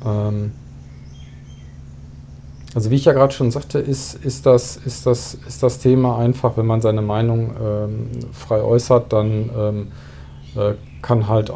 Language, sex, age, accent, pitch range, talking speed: German, male, 40-59, German, 105-120 Hz, 130 wpm